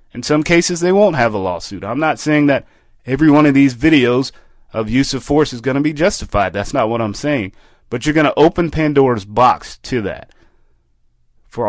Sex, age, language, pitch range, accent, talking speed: male, 30-49, English, 110-140 Hz, American, 210 wpm